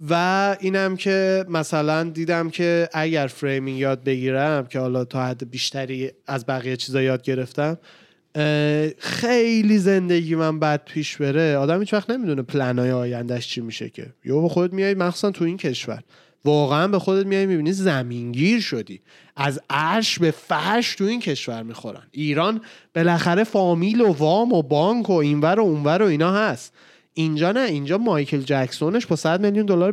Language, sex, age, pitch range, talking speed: Persian, male, 30-49, 140-195 Hz, 160 wpm